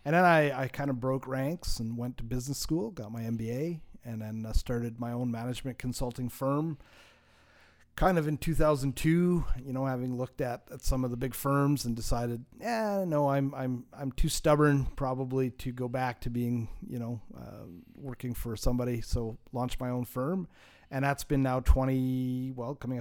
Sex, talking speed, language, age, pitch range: male, 190 wpm, English, 30-49, 120-145 Hz